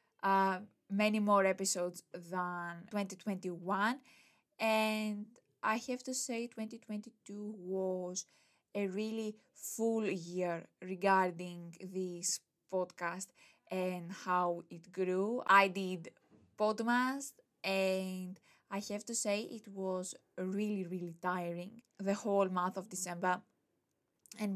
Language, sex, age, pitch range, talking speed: English, female, 20-39, 185-210 Hz, 105 wpm